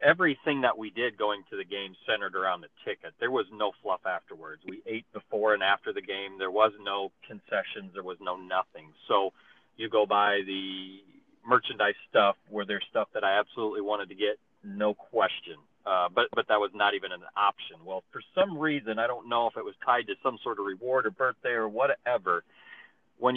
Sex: male